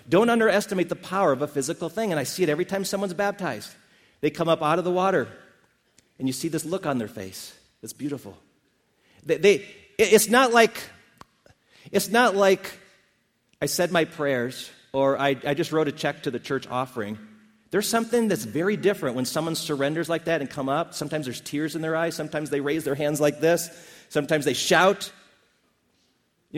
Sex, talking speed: male, 185 wpm